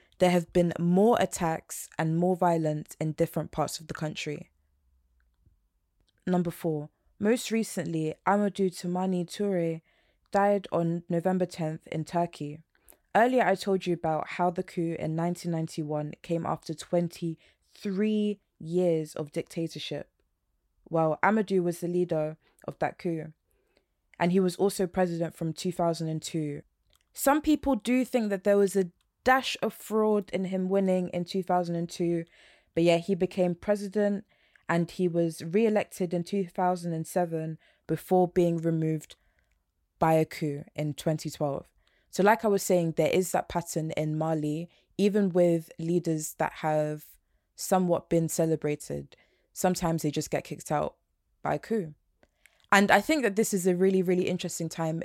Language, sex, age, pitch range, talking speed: English, female, 20-39, 160-185 Hz, 145 wpm